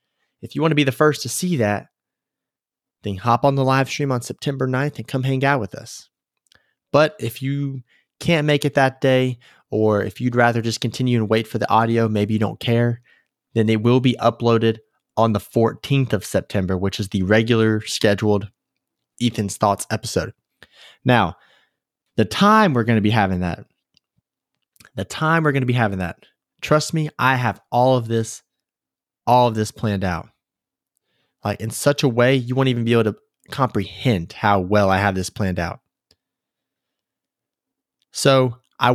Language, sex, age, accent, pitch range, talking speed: English, male, 30-49, American, 105-135 Hz, 180 wpm